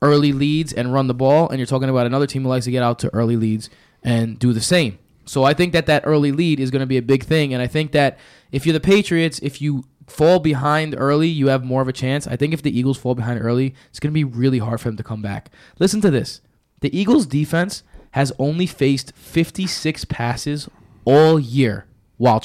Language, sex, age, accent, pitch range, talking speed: English, male, 20-39, American, 130-165 Hz, 240 wpm